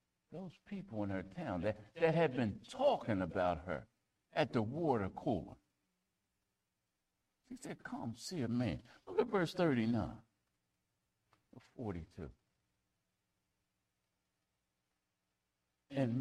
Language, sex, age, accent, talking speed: English, male, 60-79, American, 105 wpm